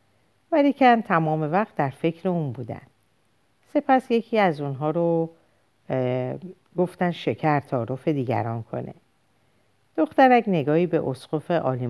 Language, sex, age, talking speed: Persian, female, 50-69, 110 wpm